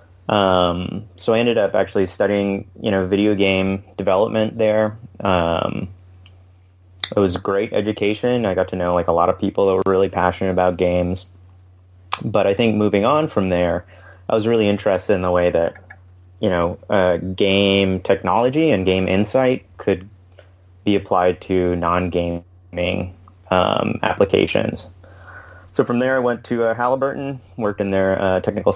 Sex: male